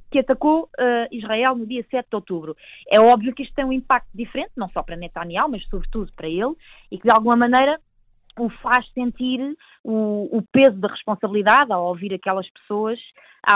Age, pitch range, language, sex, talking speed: 20-39, 190-245 Hz, Portuguese, female, 185 wpm